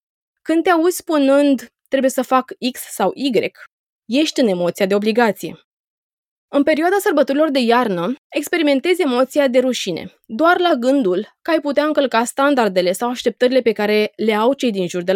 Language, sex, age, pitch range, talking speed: Romanian, female, 20-39, 215-290 Hz, 165 wpm